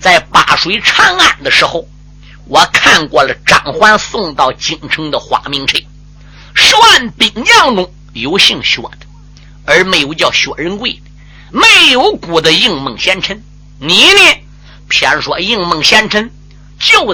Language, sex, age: Chinese, male, 50-69